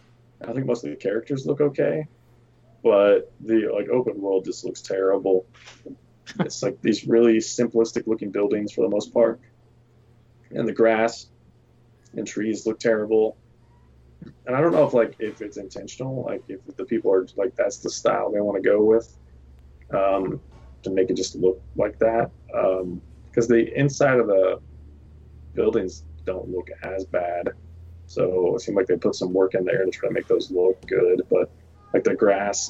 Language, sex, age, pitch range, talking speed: English, male, 20-39, 95-120 Hz, 175 wpm